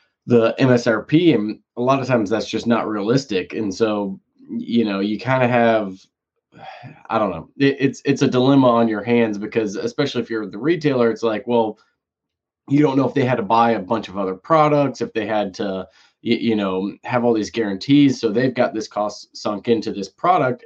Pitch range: 105-125 Hz